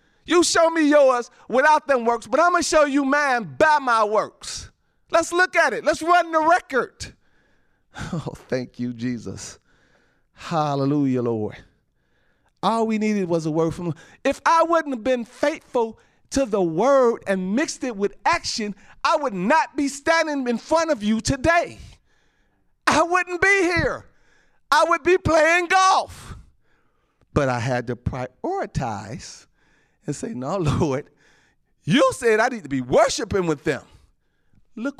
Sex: male